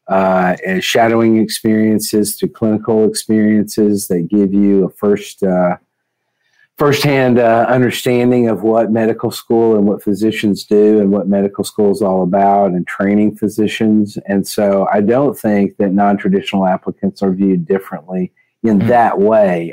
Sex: male